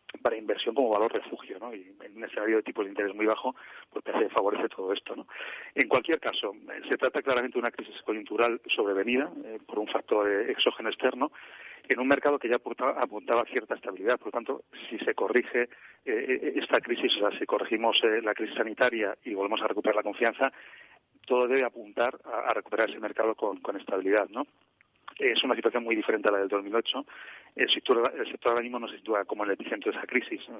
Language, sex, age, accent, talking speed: Spanish, male, 40-59, Spanish, 210 wpm